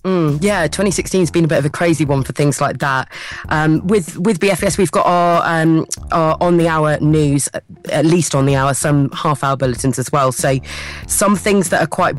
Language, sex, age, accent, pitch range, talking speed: English, female, 30-49, British, 135-165 Hz, 220 wpm